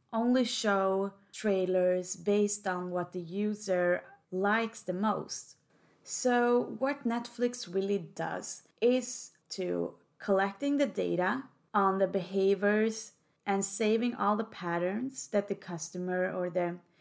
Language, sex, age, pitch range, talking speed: Swedish, female, 20-39, 180-220 Hz, 120 wpm